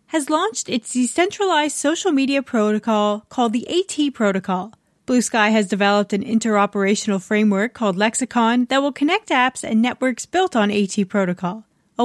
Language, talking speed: English, 150 wpm